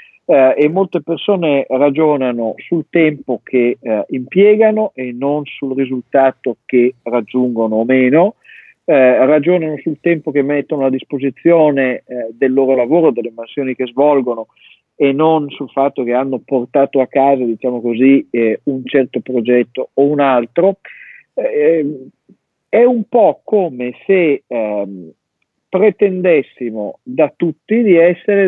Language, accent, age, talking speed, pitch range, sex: Italian, native, 50-69, 135 wpm, 130-190 Hz, male